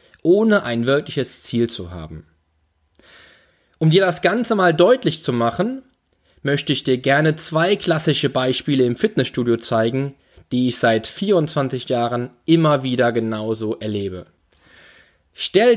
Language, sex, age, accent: German, male, 20-39, German